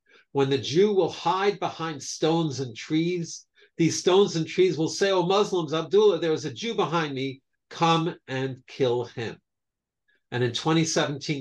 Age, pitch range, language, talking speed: 50-69, 120-155 Hz, English, 165 wpm